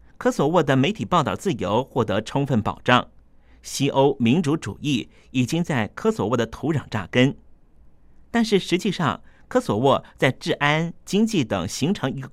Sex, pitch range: male, 105-150 Hz